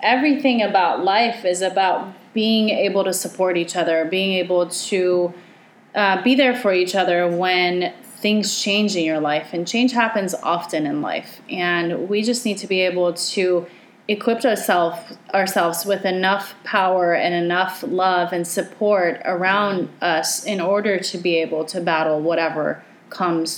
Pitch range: 175-200 Hz